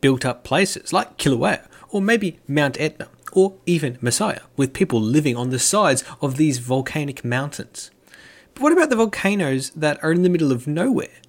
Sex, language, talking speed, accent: male, English, 175 wpm, Australian